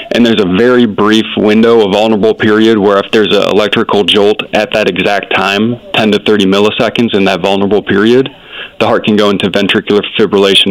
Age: 20-39